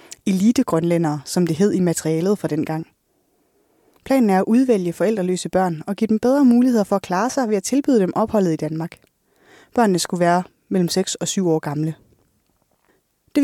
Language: Danish